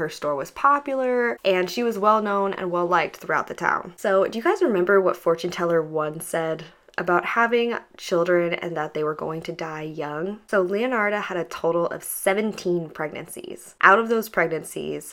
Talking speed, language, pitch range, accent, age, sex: 190 wpm, English, 165-210 Hz, American, 20-39, female